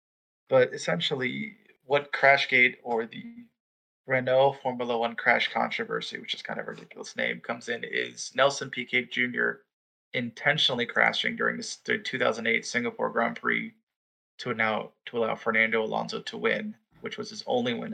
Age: 20-39